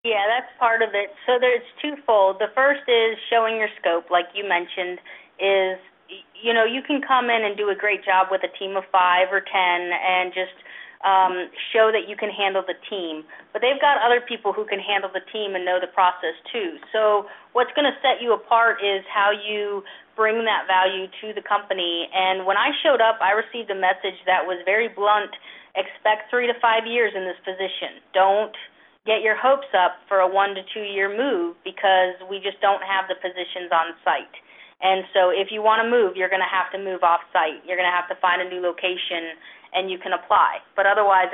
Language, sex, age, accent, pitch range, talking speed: English, female, 30-49, American, 185-225 Hz, 210 wpm